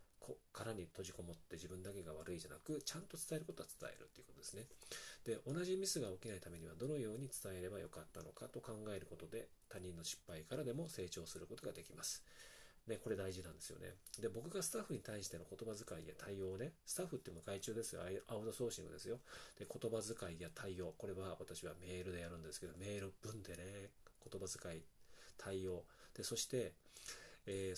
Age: 40-59